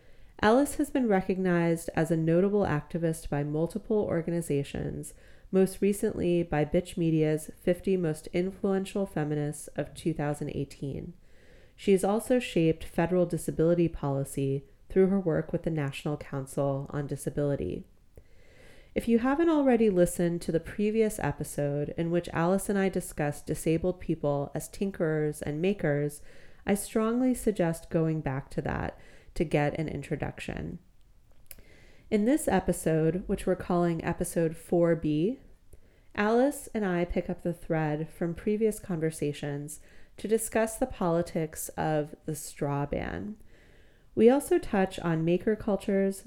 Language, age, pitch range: English, 30-49, 150-195 Hz